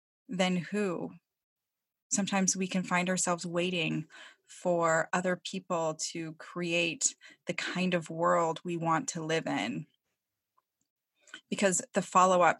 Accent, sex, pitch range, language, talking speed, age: American, female, 165-195 Hz, English, 120 wpm, 20-39